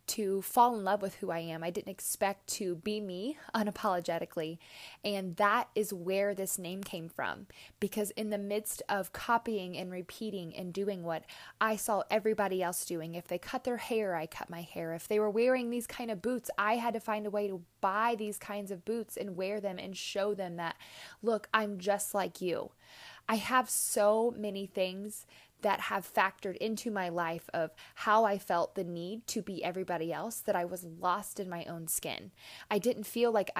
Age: 20-39